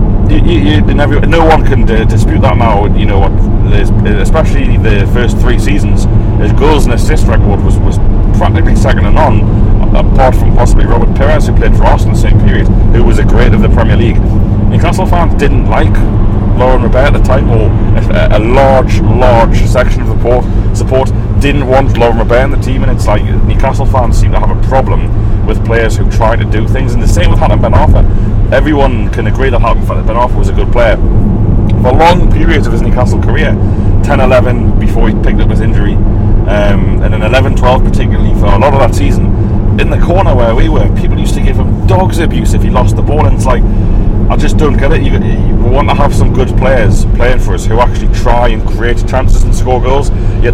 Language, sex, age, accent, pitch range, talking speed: English, male, 30-49, British, 100-110 Hz, 220 wpm